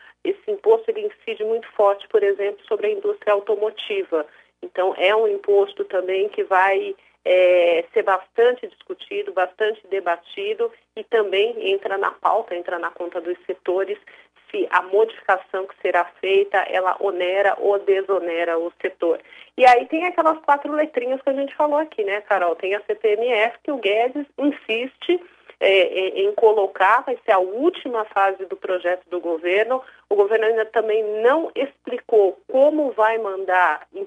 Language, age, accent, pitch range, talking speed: Portuguese, 40-59, Brazilian, 185-290 Hz, 155 wpm